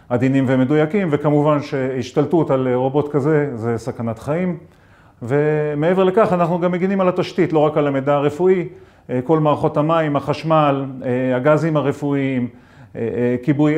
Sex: male